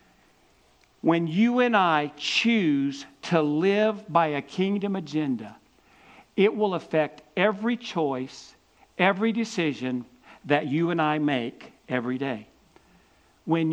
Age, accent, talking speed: 50-69, American, 115 wpm